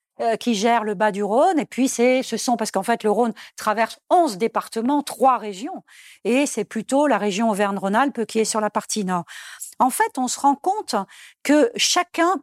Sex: female